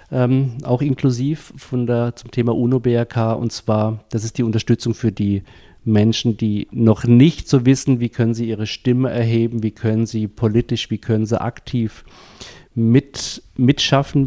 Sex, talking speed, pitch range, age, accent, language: male, 165 wpm, 105-120 Hz, 40-59, German, German